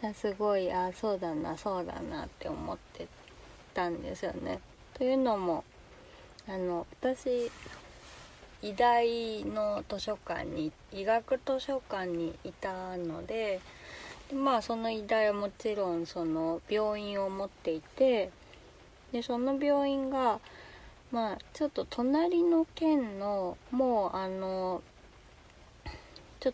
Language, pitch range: Japanese, 185-255 Hz